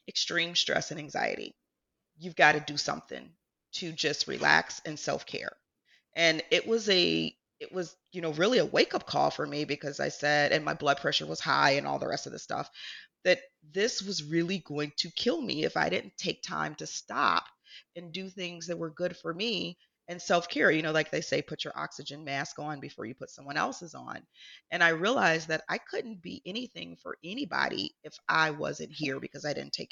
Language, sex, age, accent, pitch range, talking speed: English, female, 30-49, American, 155-215 Hz, 210 wpm